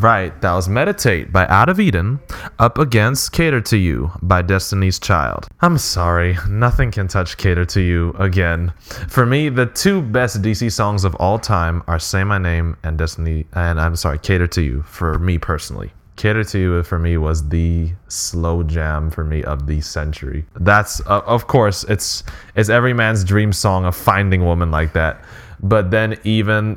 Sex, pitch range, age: male, 85-105 Hz, 10-29